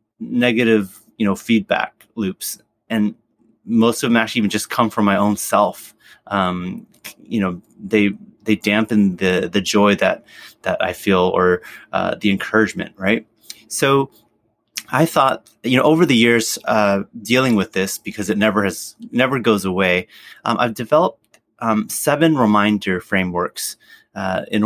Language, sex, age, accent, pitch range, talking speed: English, male, 30-49, American, 100-115 Hz, 155 wpm